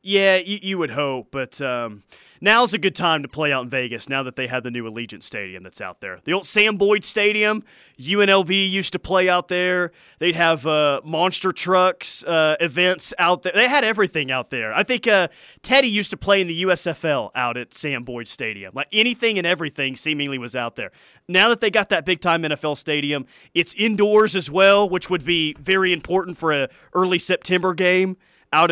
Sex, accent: male, American